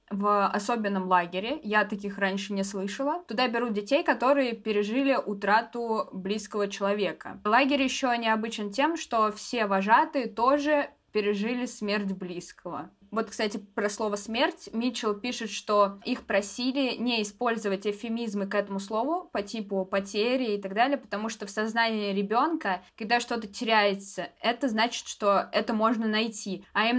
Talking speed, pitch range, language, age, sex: 145 wpm, 205-240 Hz, Russian, 20-39, female